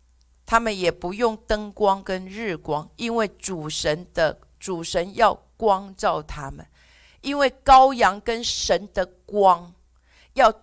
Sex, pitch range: female, 190-275 Hz